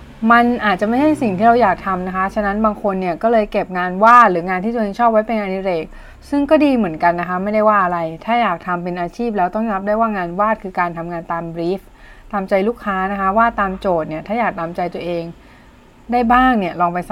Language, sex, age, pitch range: Thai, female, 20-39, 185-235 Hz